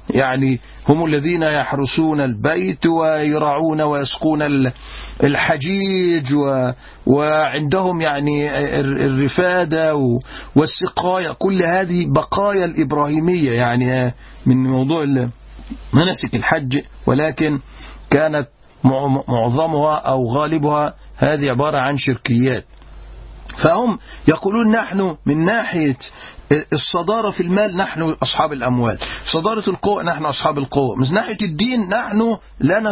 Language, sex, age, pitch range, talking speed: Arabic, male, 50-69, 140-190 Hz, 95 wpm